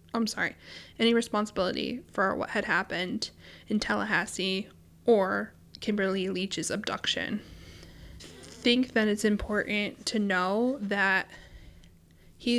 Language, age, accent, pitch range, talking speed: English, 20-39, American, 180-220 Hz, 105 wpm